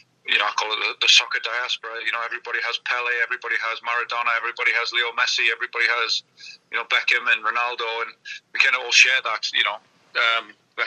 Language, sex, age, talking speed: English, male, 40-59, 215 wpm